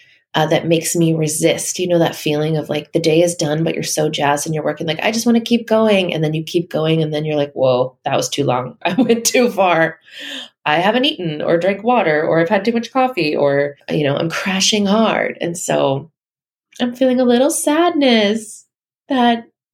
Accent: American